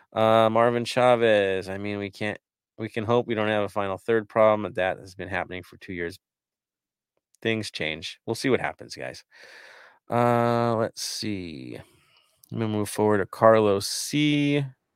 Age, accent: 30-49, American